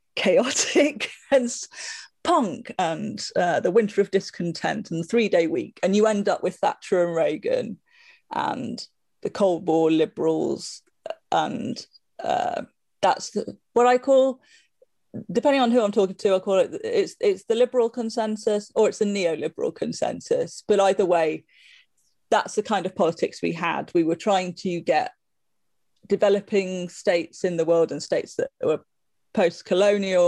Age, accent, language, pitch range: 30-49, British, English, 170-260 Hz